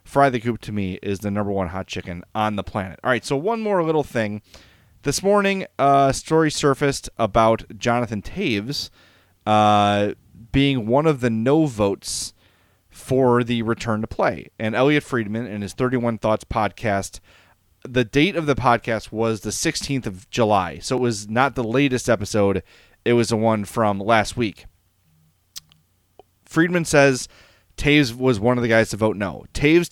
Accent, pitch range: American, 100-140 Hz